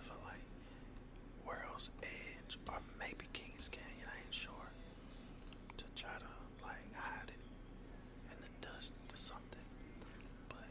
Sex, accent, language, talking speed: male, American, English, 135 wpm